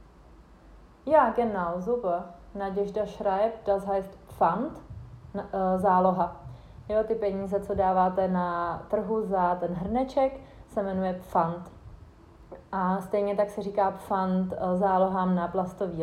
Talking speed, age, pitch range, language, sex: 130 wpm, 30-49, 185-225 Hz, Czech, female